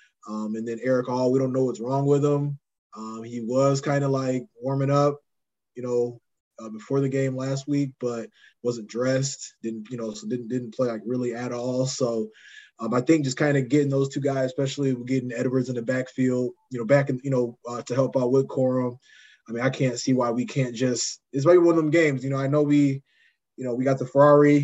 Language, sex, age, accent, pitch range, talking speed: English, male, 20-39, American, 125-140 Hz, 235 wpm